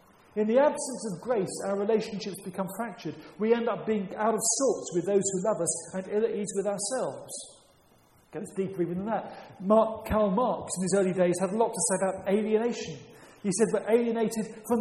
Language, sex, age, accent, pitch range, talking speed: English, male, 40-59, British, 175-220 Hz, 205 wpm